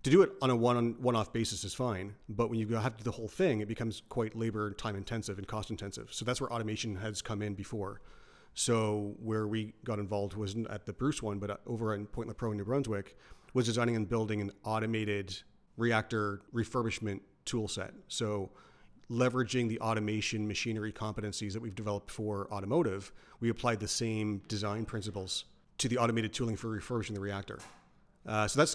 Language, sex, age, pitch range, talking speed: English, male, 40-59, 105-120 Hz, 195 wpm